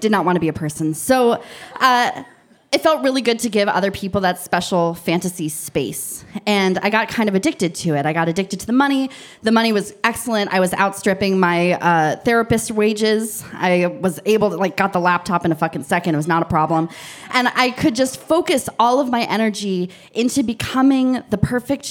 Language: English